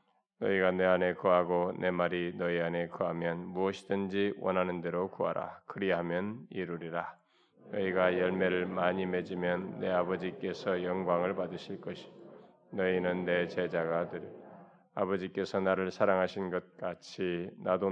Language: Korean